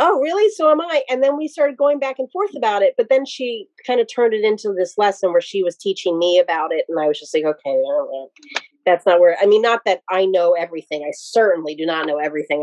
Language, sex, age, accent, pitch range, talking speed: English, female, 30-49, American, 165-255 Hz, 255 wpm